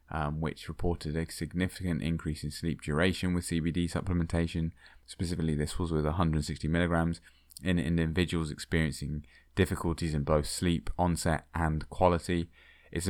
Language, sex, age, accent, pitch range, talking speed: English, male, 20-39, British, 75-90 Hz, 140 wpm